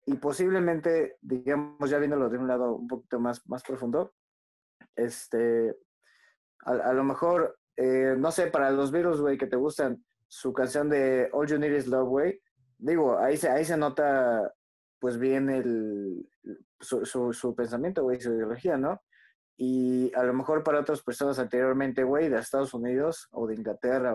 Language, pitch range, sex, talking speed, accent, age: Spanish, 125-145 Hz, male, 170 wpm, Mexican, 20-39